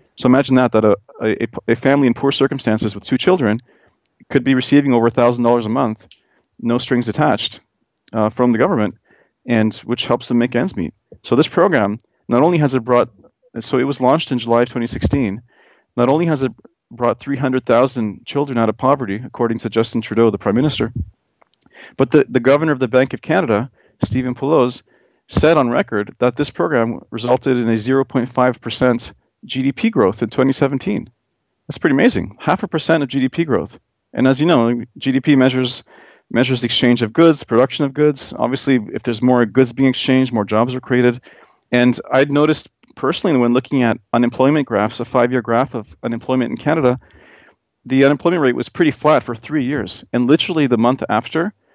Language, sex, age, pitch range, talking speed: English, male, 40-59, 115-135 Hz, 180 wpm